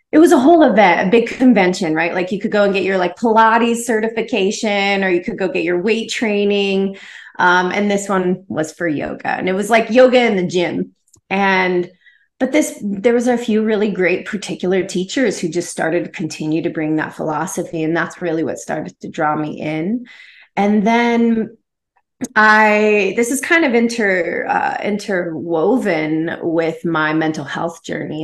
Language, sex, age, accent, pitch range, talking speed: English, female, 30-49, American, 165-215 Hz, 185 wpm